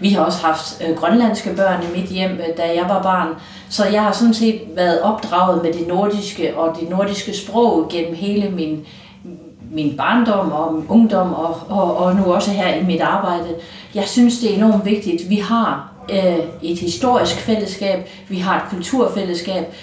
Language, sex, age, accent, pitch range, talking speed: Swedish, female, 40-59, Danish, 165-205 Hz, 175 wpm